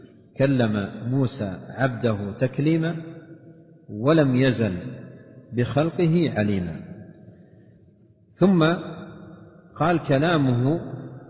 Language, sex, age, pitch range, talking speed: Arabic, male, 50-69, 115-145 Hz, 60 wpm